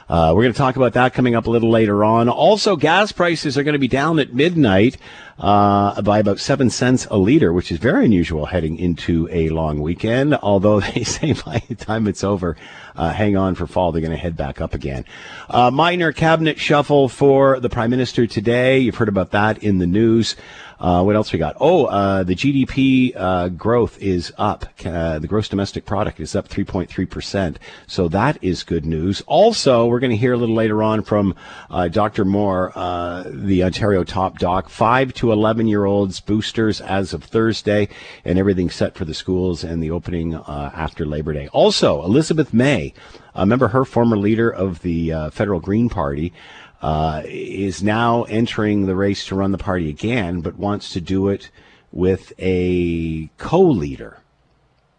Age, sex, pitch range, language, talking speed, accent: 50-69, male, 90-115 Hz, English, 190 wpm, American